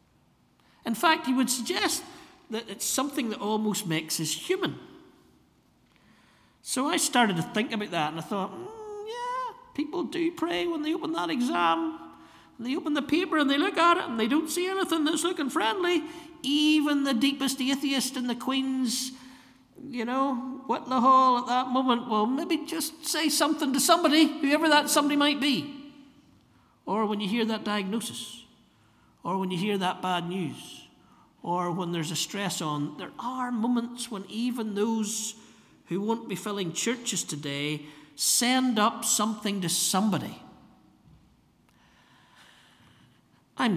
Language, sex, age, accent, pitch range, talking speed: English, male, 60-79, British, 180-290 Hz, 160 wpm